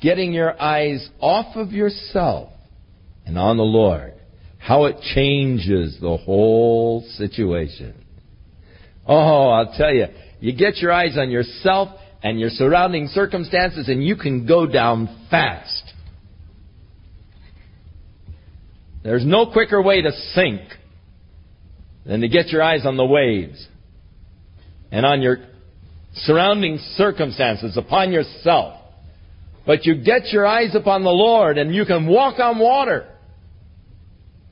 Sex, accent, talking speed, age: male, American, 125 wpm, 50-69